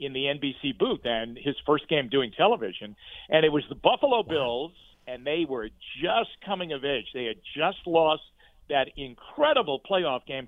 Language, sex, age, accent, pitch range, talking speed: English, male, 50-69, American, 125-155 Hz, 180 wpm